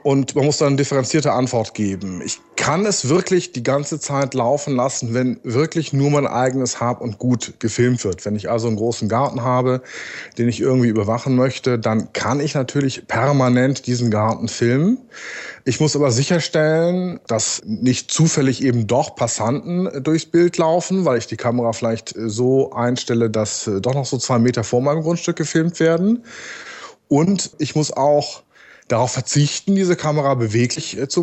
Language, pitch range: German, 120-155 Hz